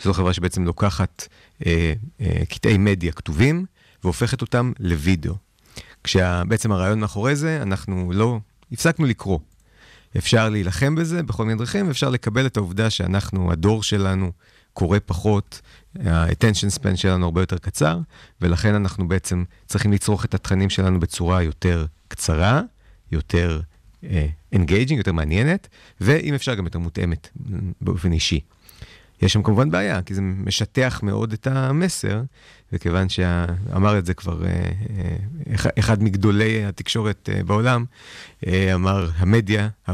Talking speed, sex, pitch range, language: 135 wpm, male, 90-110 Hz, Hebrew